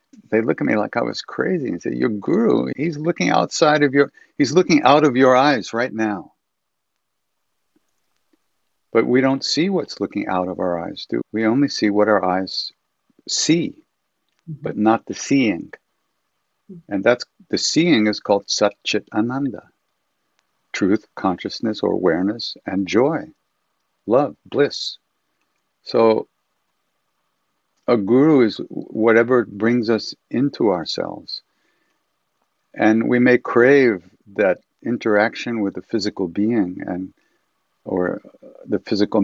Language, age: English, 60-79